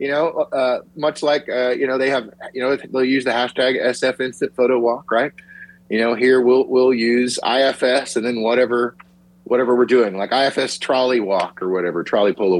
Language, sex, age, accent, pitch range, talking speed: English, male, 30-49, American, 115-165 Hz, 200 wpm